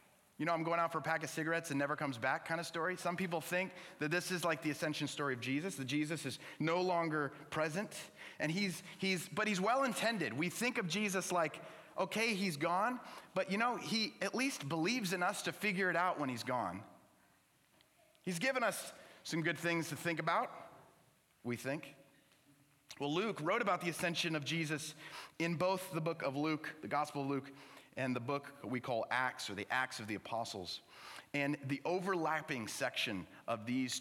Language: English